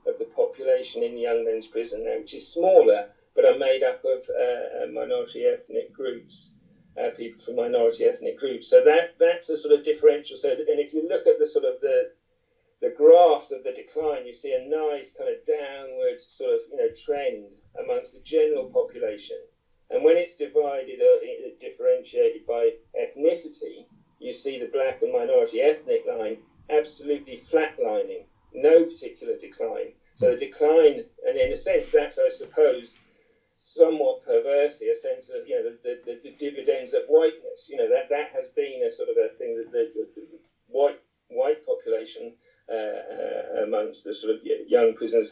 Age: 50-69